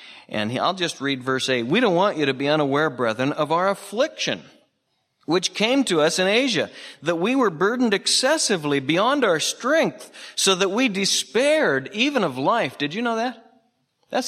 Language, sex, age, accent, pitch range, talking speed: English, male, 40-59, American, 125-200 Hz, 180 wpm